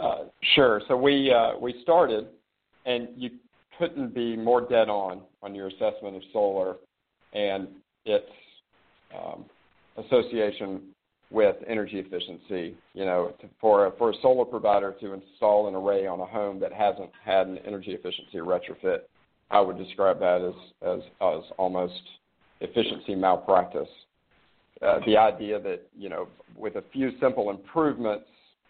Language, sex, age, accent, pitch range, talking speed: English, male, 50-69, American, 95-140 Hz, 145 wpm